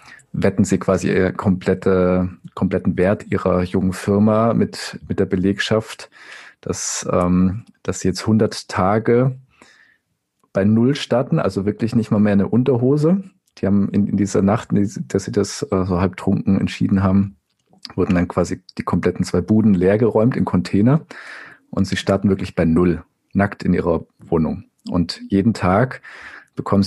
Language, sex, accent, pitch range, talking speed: German, male, German, 90-105 Hz, 160 wpm